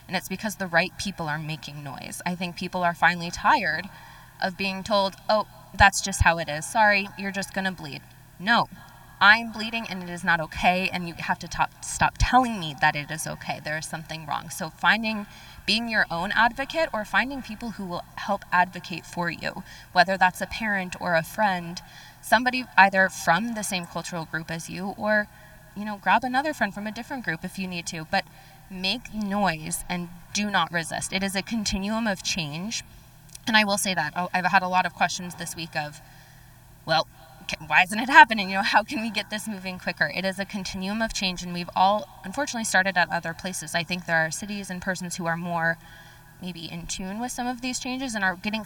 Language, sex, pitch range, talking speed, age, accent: English, female, 165-210 Hz, 215 wpm, 20-39, American